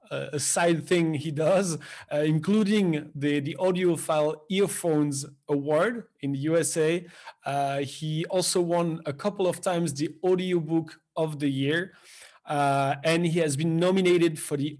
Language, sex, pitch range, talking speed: English, male, 145-175 Hz, 145 wpm